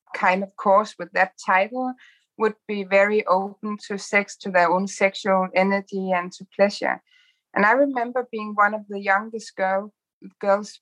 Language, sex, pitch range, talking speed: Danish, female, 195-225 Hz, 165 wpm